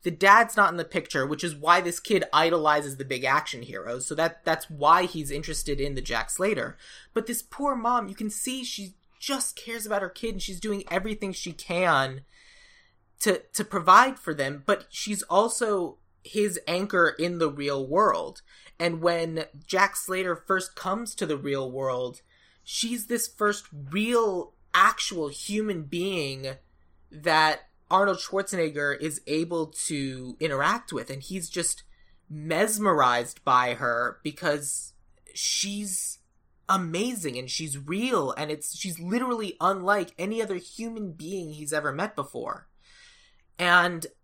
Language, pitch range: English, 150-200 Hz